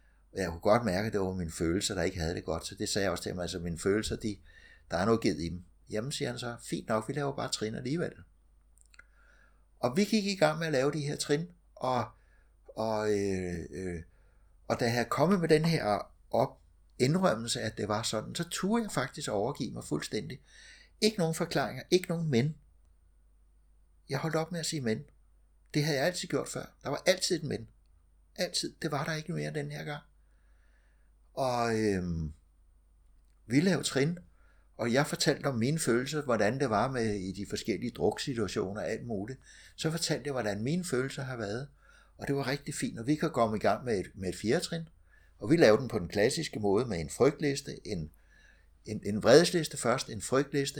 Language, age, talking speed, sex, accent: Danish, 60-79, 205 wpm, male, native